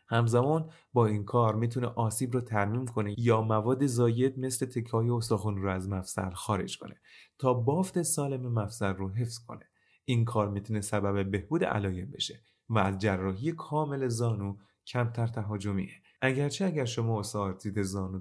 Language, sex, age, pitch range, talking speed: Persian, male, 30-49, 105-130 Hz, 150 wpm